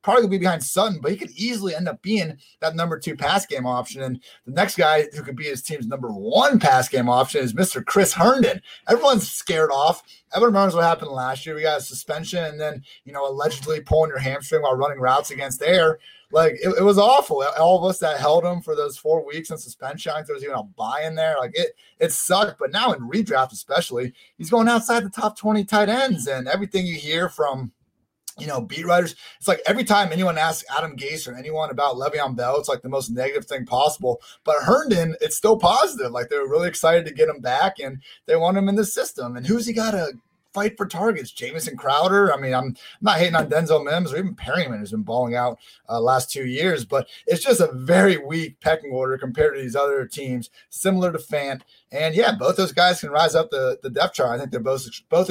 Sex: male